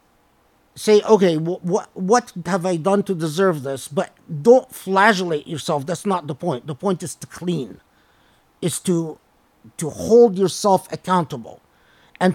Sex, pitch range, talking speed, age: male, 180-215 Hz, 145 wpm, 50-69